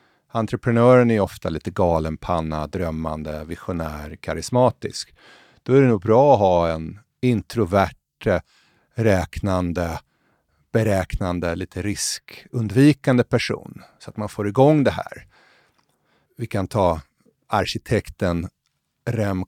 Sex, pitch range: male, 85-115 Hz